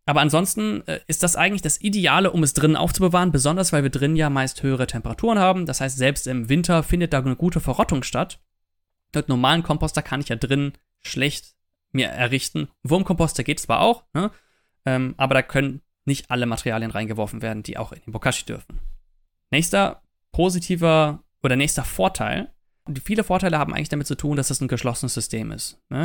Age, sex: 20-39, male